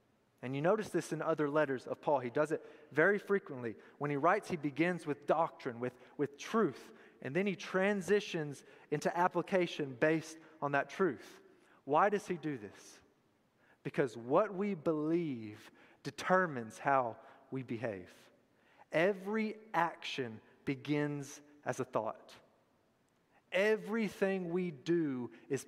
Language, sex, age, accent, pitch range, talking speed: English, male, 30-49, American, 135-185 Hz, 135 wpm